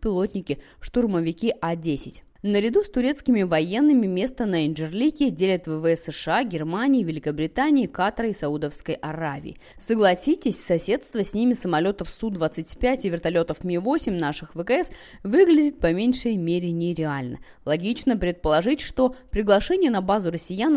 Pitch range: 165-245 Hz